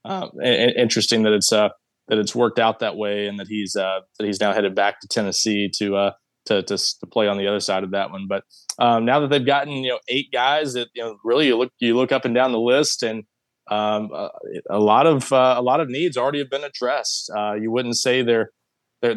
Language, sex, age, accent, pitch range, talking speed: English, male, 20-39, American, 110-130 Hz, 255 wpm